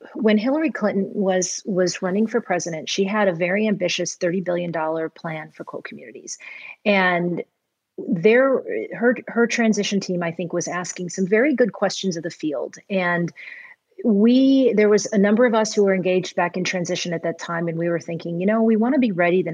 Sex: female